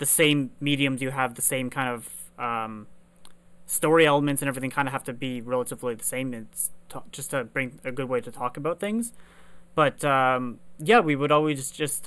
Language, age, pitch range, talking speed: English, 20-39, 130-150 Hz, 205 wpm